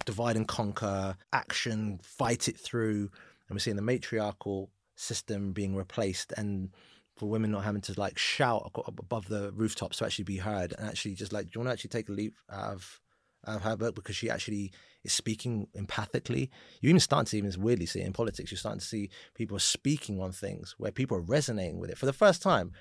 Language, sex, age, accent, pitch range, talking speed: English, male, 30-49, British, 100-135 Hz, 215 wpm